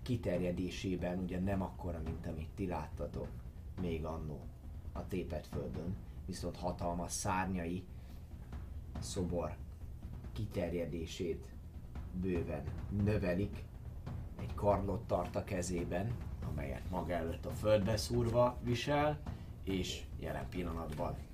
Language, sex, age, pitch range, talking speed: Hungarian, male, 30-49, 85-110 Hz, 95 wpm